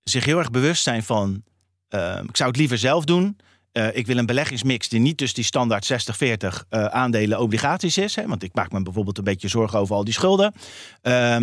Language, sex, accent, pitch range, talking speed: Dutch, male, Dutch, 110-145 Hz, 220 wpm